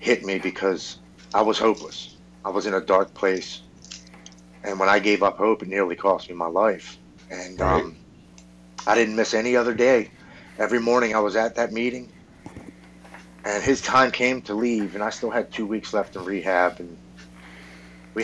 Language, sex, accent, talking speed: English, male, American, 185 wpm